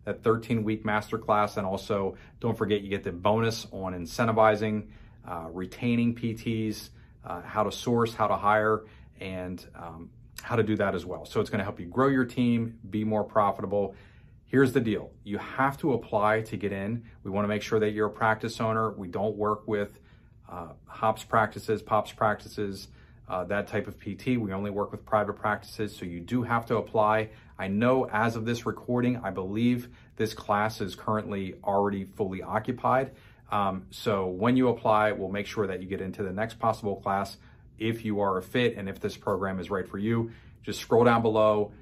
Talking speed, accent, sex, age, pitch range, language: 200 wpm, American, male, 40-59, 100-115 Hz, English